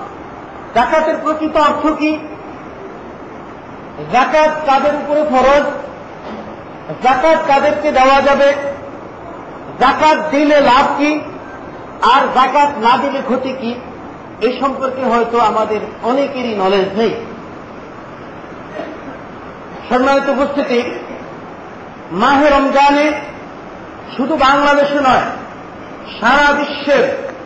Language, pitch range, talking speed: Bengali, 265-315 Hz, 65 wpm